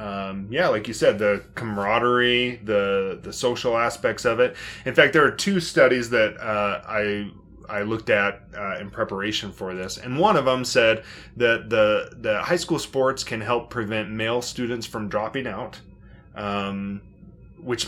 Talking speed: 170 wpm